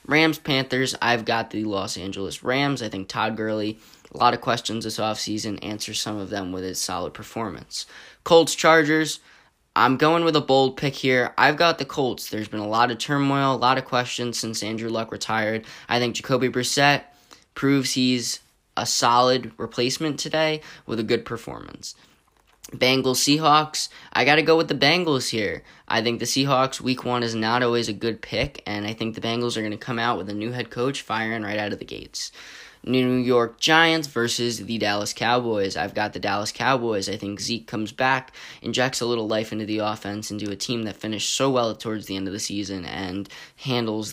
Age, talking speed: 10-29, 200 wpm